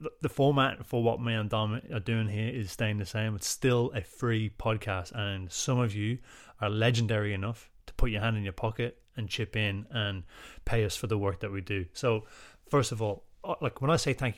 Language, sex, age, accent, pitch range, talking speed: English, male, 30-49, British, 100-120 Hz, 225 wpm